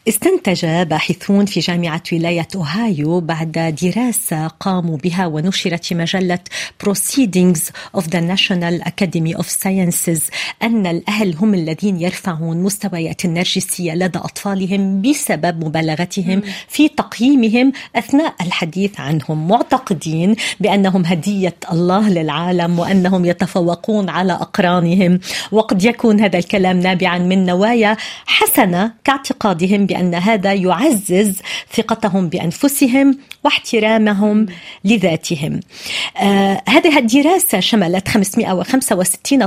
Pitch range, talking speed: 180-225 Hz, 100 wpm